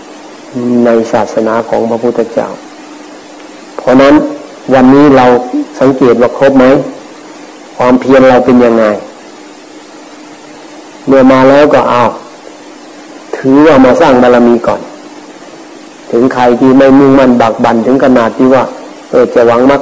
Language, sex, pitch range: Thai, male, 115-130 Hz